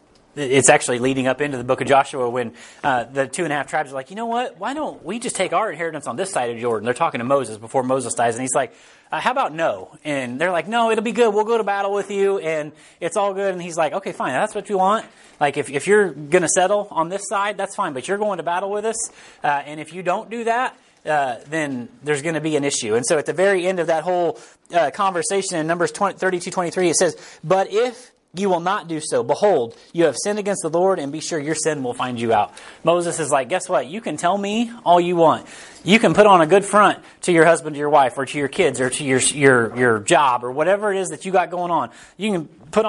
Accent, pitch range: American, 140-195 Hz